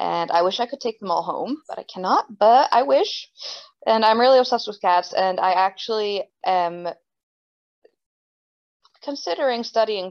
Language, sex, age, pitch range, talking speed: English, female, 20-39, 175-225 Hz, 160 wpm